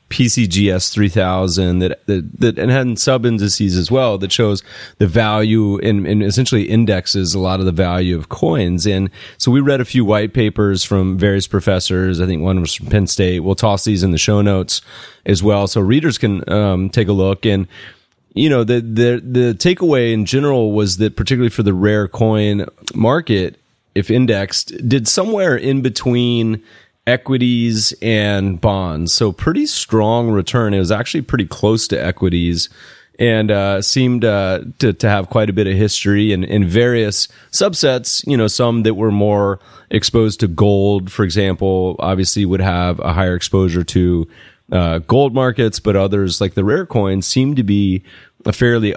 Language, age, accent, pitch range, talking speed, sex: English, 30-49, American, 95-115 Hz, 180 wpm, male